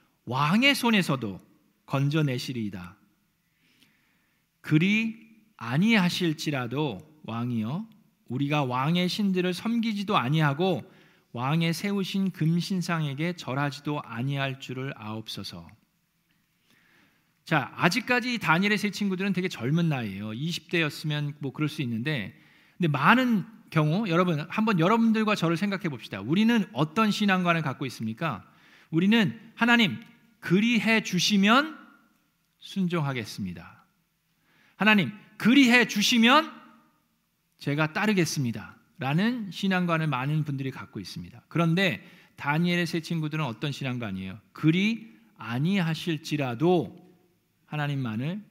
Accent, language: native, Korean